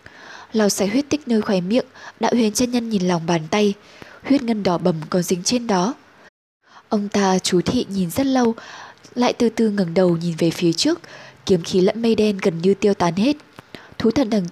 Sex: female